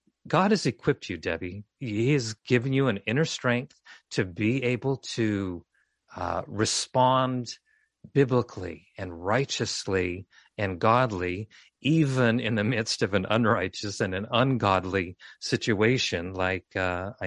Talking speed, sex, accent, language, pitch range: 125 wpm, male, American, English, 95-130 Hz